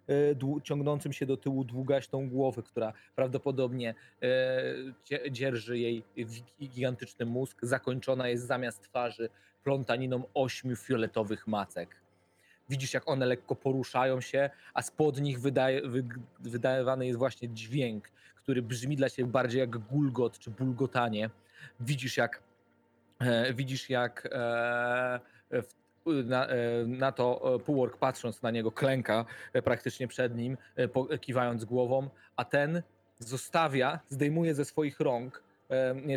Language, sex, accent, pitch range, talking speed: Polish, male, native, 120-140 Hz, 125 wpm